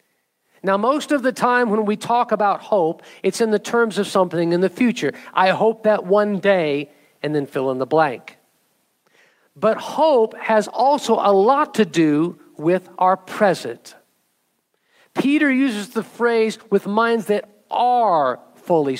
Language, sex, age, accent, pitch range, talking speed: English, male, 50-69, American, 185-220 Hz, 160 wpm